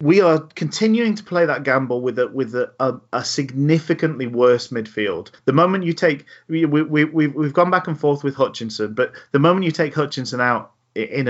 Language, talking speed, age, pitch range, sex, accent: English, 200 wpm, 30-49, 125-155 Hz, male, British